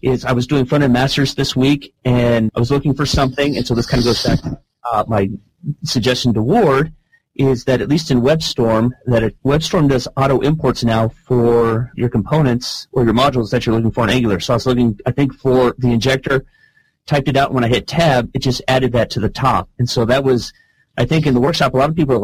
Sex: male